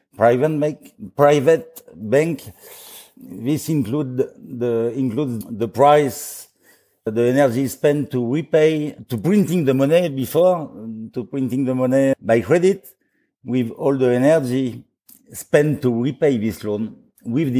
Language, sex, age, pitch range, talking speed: English, male, 50-69, 110-135 Hz, 120 wpm